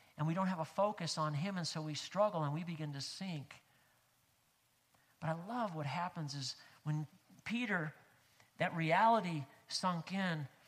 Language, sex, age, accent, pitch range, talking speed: English, male, 50-69, American, 130-165 Hz, 165 wpm